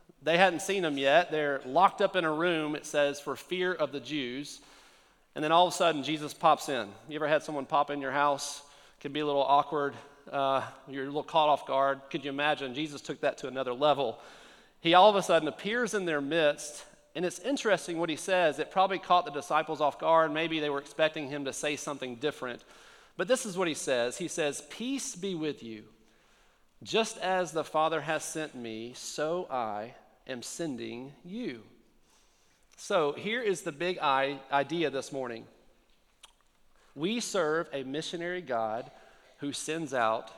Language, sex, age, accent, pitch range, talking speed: English, male, 40-59, American, 135-170 Hz, 190 wpm